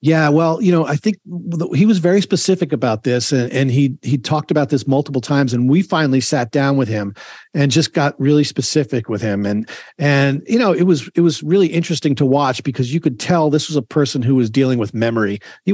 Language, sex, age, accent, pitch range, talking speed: English, male, 40-59, American, 125-155 Hz, 235 wpm